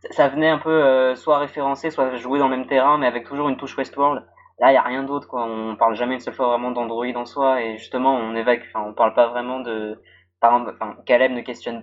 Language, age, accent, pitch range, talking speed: French, 20-39, French, 120-135 Hz, 255 wpm